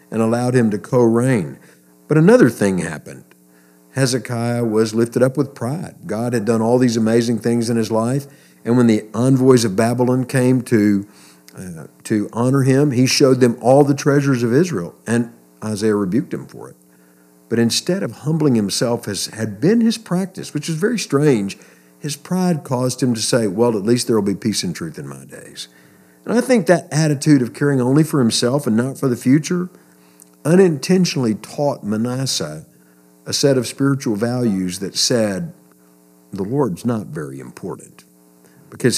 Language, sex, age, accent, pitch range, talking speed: English, male, 50-69, American, 110-145 Hz, 175 wpm